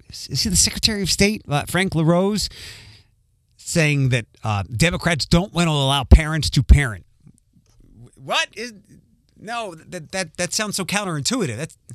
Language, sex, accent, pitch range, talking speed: English, male, American, 115-180 Hz, 135 wpm